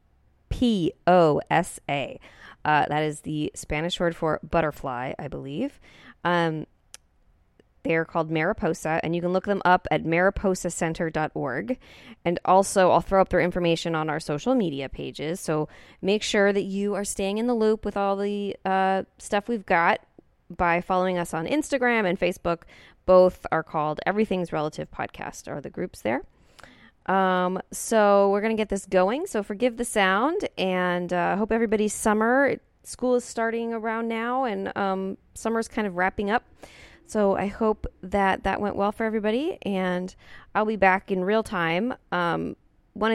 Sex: female